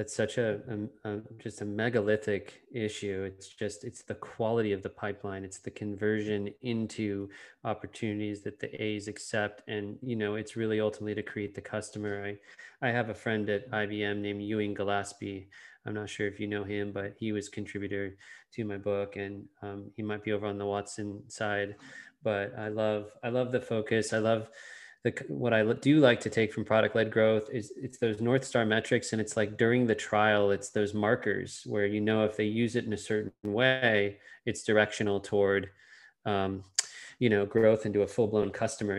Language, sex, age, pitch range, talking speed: English, male, 20-39, 105-115 Hz, 190 wpm